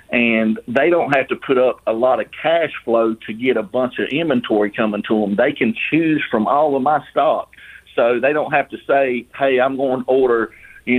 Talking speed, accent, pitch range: 225 wpm, American, 110-130 Hz